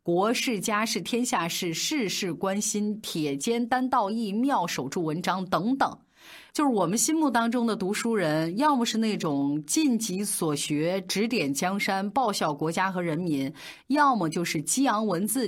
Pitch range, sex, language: 165-240 Hz, female, Chinese